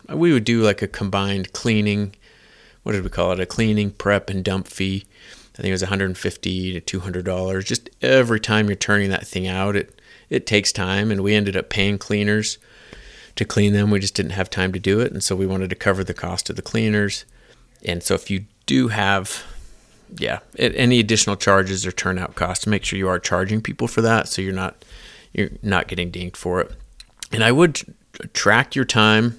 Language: English